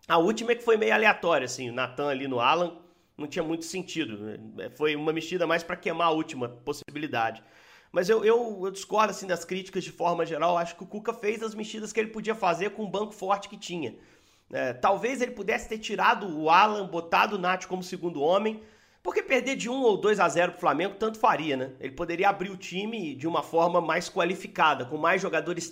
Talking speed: 220 wpm